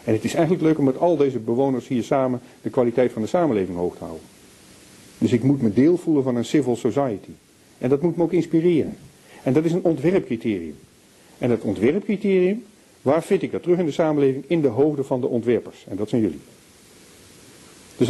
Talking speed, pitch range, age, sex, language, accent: 205 wpm, 95-140 Hz, 50-69, male, Dutch, Dutch